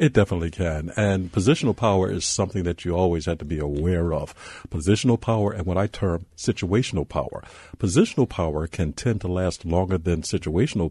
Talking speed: 180 wpm